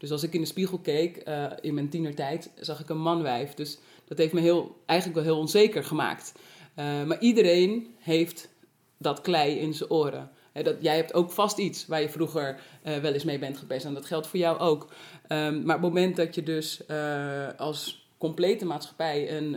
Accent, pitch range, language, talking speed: Dutch, 145-170 Hz, Dutch, 210 wpm